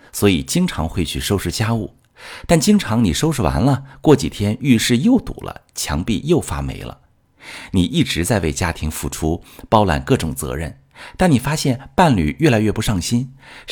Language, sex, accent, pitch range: Chinese, male, native, 85-130 Hz